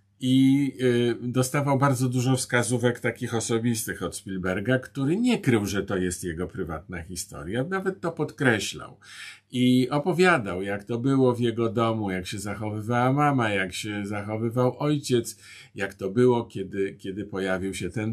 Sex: male